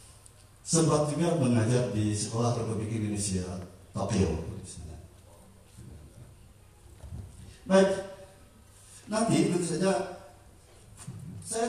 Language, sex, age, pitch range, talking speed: Indonesian, male, 50-69, 100-165 Hz, 65 wpm